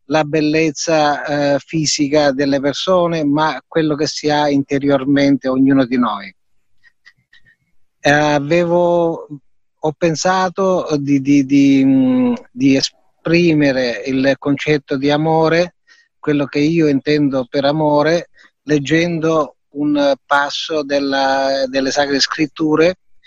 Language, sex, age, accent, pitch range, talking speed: Italian, male, 30-49, native, 135-160 Hz, 95 wpm